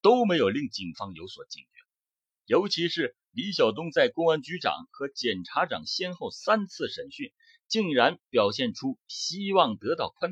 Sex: male